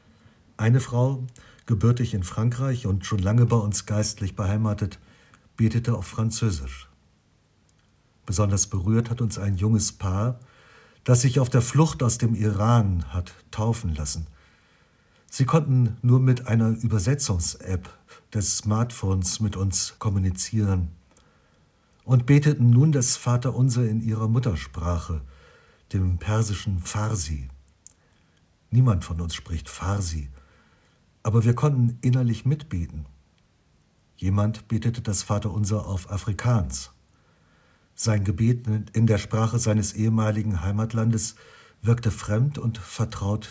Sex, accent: male, German